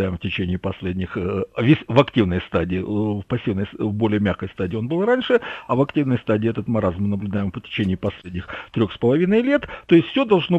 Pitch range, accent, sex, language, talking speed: 105-170 Hz, native, male, Russian, 195 wpm